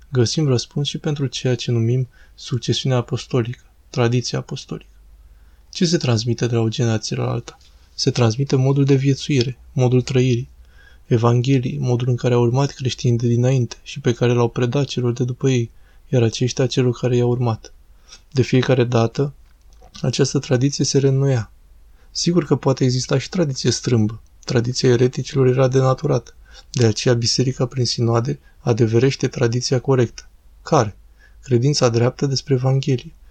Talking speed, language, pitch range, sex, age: 150 wpm, Romanian, 120-135 Hz, male, 20-39